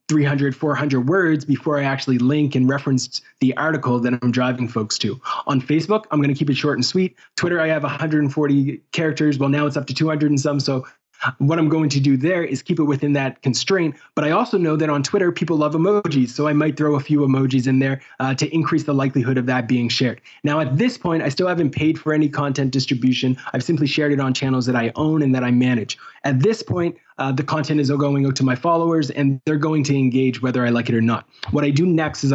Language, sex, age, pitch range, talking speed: English, male, 20-39, 135-155 Hz, 245 wpm